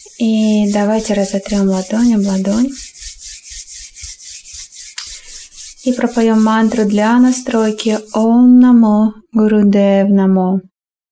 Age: 20-39